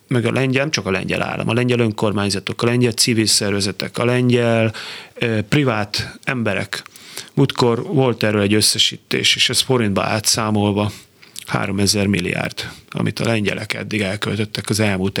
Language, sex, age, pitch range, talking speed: Hungarian, male, 30-49, 105-125 Hz, 145 wpm